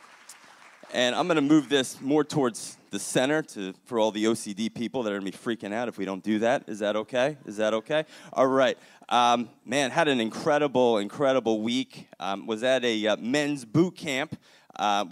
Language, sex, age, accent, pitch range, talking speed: English, male, 30-49, American, 110-140 Hz, 205 wpm